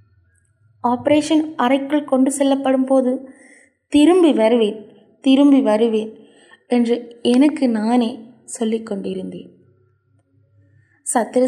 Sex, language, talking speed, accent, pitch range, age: female, Tamil, 70 wpm, native, 200-255 Hz, 20-39